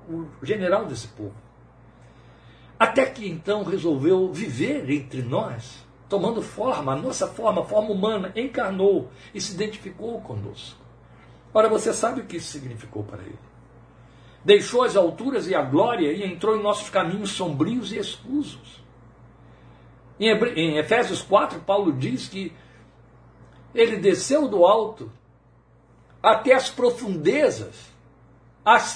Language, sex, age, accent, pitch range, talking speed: Portuguese, male, 60-79, Brazilian, 140-215 Hz, 125 wpm